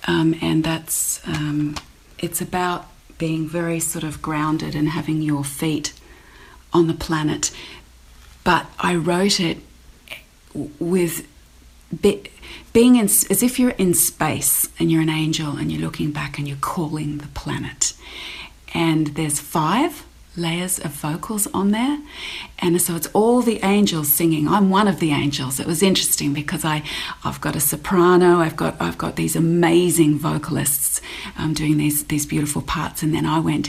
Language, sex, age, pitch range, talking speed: English, female, 40-59, 150-175 Hz, 155 wpm